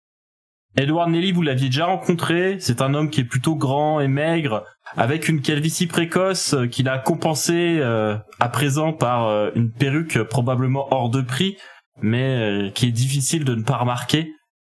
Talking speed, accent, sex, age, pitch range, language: 160 wpm, French, male, 20-39, 120-150 Hz, French